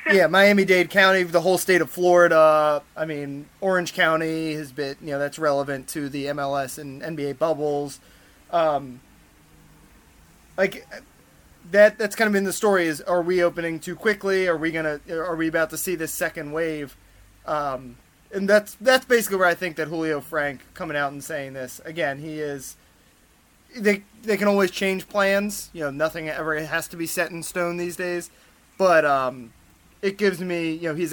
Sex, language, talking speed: male, English, 185 wpm